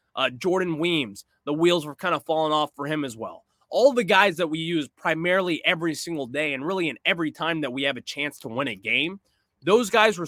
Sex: male